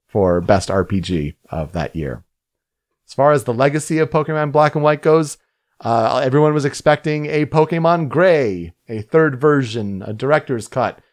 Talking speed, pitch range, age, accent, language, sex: 160 wpm, 115-160 Hz, 40-59, American, English, male